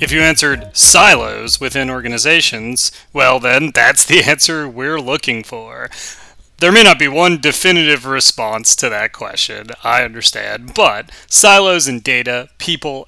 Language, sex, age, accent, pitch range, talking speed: English, male, 30-49, American, 120-165 Hz, 140 wpm